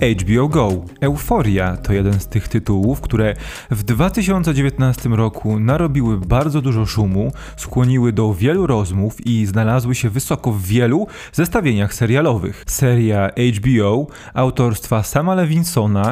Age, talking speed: 20-39, 125 wpm